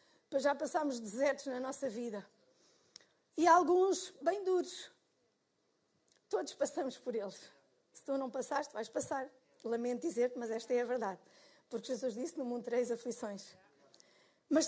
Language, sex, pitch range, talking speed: Portuguese, female, 285-410 Hz, 145 wpm